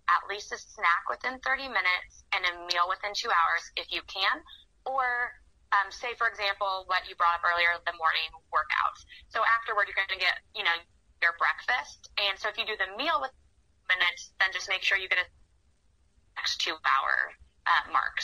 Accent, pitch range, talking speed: American, 170-200 Hz, 195 wpm